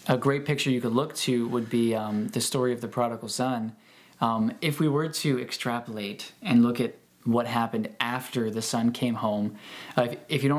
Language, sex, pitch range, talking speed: English, male, 120-140 Hz, 210 wpm